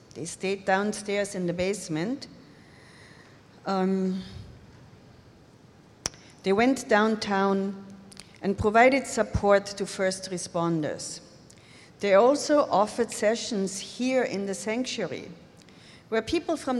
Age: 50-69